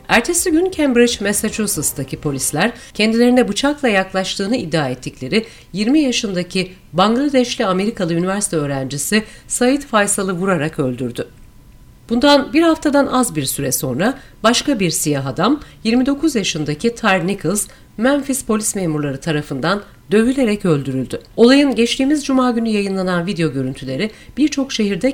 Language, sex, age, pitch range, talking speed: Turkish, female, 40-59, 160-240 Hz, 120 wpm